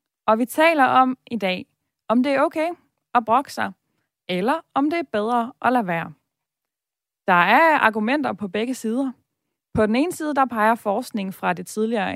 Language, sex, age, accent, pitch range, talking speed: Danish, female, 20-39, native, 195-255 Hz, 180 wpm